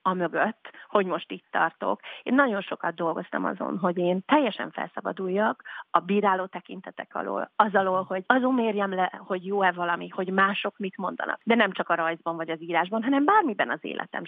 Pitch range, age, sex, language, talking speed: 175-205 Hz, 30-49, female, Hungarian, 185 wpm